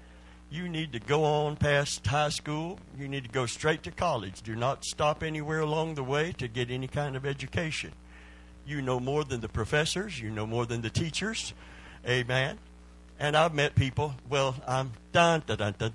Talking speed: 190 wpm